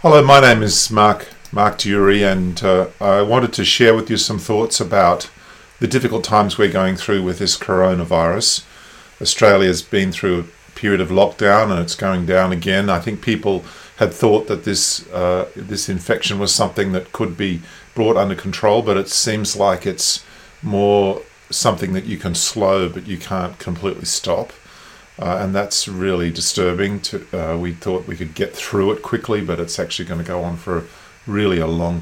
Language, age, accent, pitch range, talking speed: English, 40-59, Australian, 90-110 Hz, 190 wpm